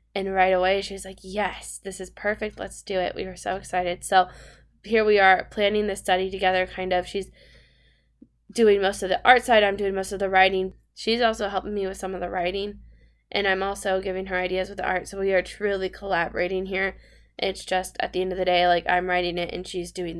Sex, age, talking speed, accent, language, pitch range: female, 10-29, 235 wpm, American, English, 185-215 Hz